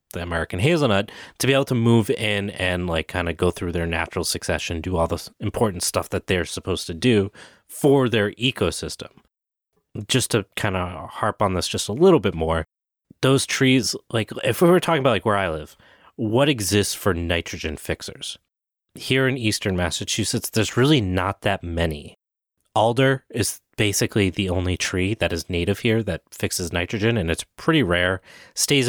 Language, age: English, 30-49